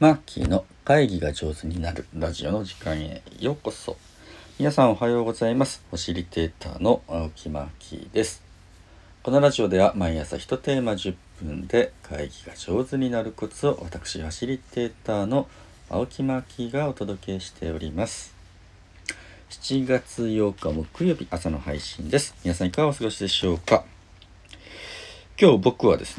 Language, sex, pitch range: Japanese, male, 85-110 Hz